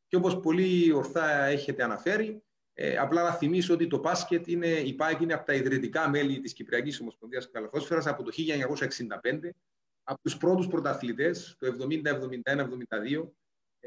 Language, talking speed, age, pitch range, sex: Greek, 145 wpm, 30-49, 130-185 Hz, male